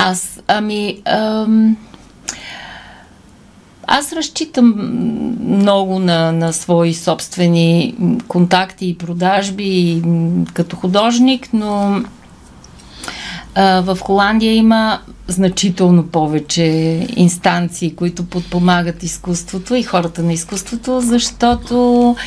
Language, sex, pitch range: Bulgarian, female, 175-220 Hz